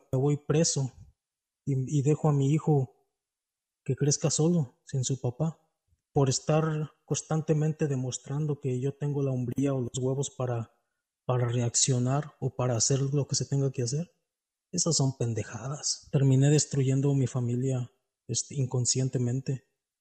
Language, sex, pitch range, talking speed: Spanish, male, 130-145 Hz, 145 wpm